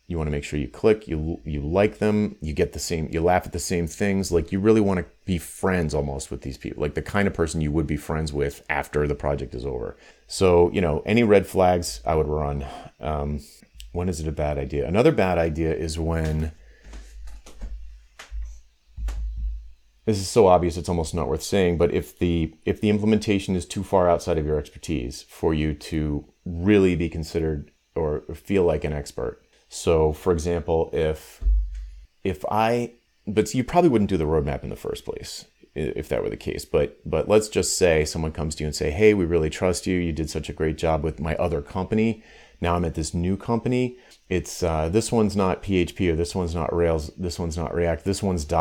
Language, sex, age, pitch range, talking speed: English, male, 30-49, 75-95 Hz, 210 wpm